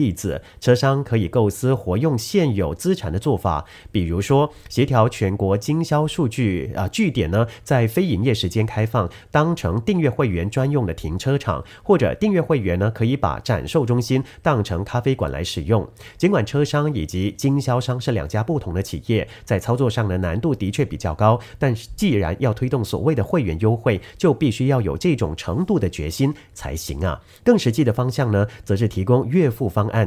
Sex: male